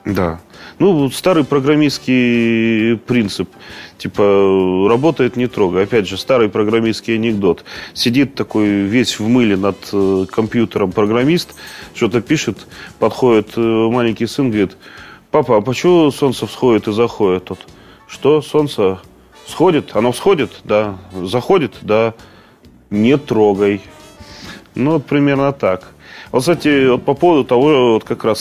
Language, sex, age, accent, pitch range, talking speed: Russian, male, 30-49, native, 100-125 Hz, 120 wpm